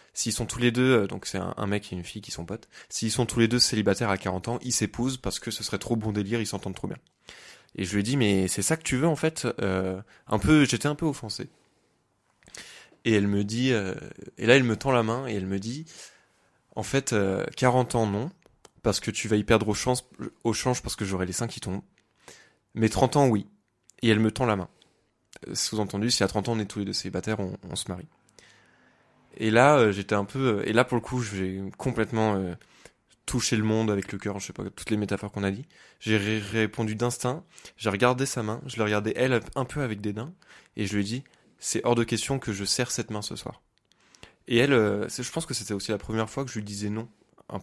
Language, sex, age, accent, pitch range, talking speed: French, male, 20-39, French, 105-125 Hz, 250 wpm